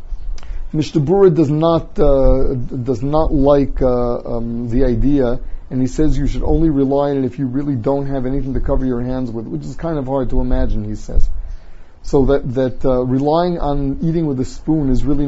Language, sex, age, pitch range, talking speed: English, male, 30-49, 120-155 Hz, 200 wpm